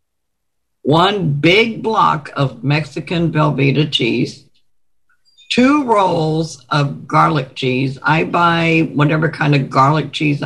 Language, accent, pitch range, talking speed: English, American, 135-170 Hz, 110 wpm